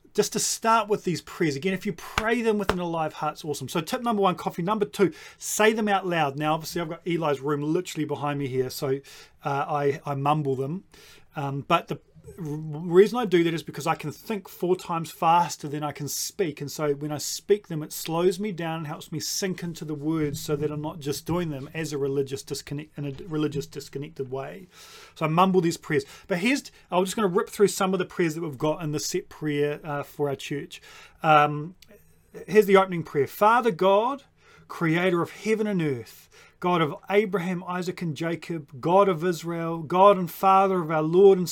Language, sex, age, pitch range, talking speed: English, male, 30-49, 150-190 Hz, 220 wpm